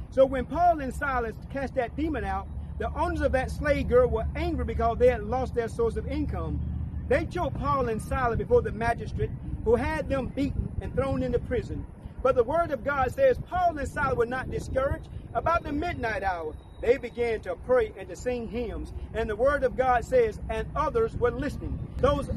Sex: male